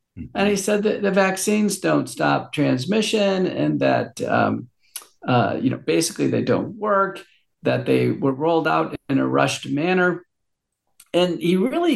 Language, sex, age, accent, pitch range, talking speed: English, male, 50-69, American, 145-195 Hz, 155 wpm